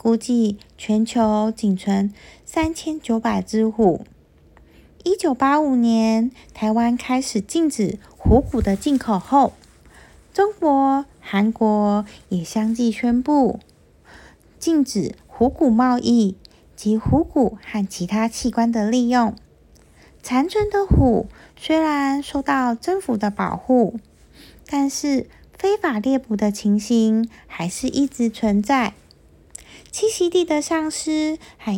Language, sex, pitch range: Chinese, female, 220-295 Hz